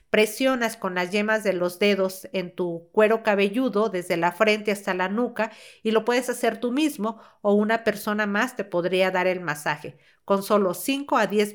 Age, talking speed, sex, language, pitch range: 50-69, 190 wpm, female, Spanish, 185-220 Hz